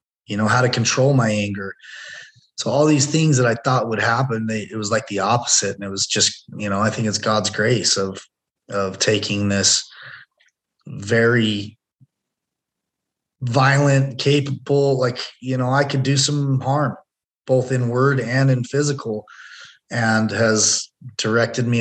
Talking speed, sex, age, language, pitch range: 155 wpm, male, 20-39, English, 110-135 Hz